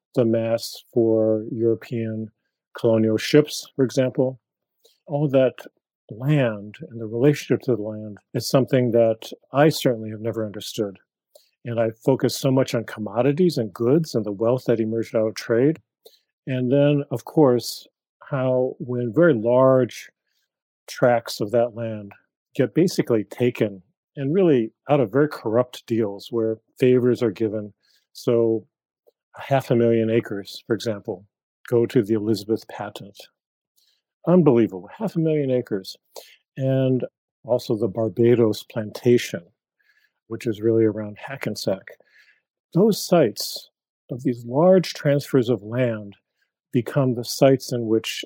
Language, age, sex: English, 40-59, male